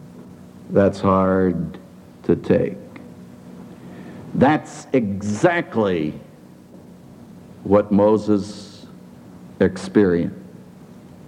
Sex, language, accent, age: male, English, American, 60-79